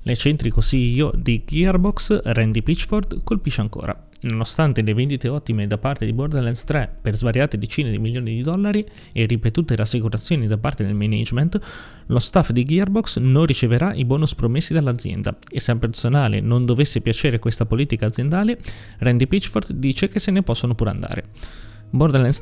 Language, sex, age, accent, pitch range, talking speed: Italian, male, 20-39, native, 115-150 Hz, 165 wpm